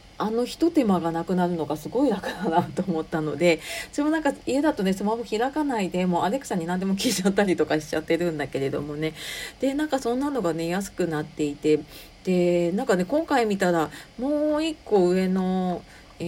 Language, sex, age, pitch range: Japanese, female, 40-59, 155-200 Hz